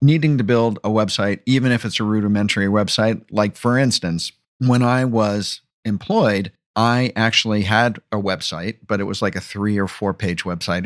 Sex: male